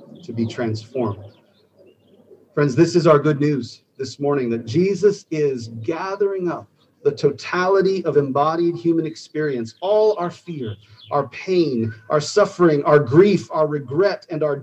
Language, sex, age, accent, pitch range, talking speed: English, male, 40-59, American, 115-165 Hz, 145 wpm